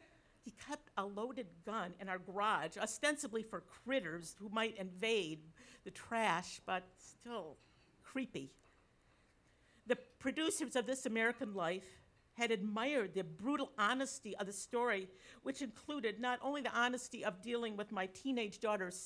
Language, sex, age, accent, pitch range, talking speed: English, female, 50-69, American, 195-270 Hz, 140 wpm